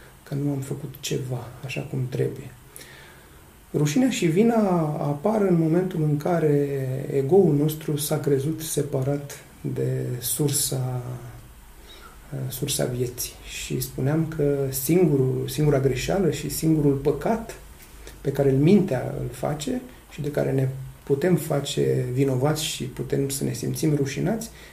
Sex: male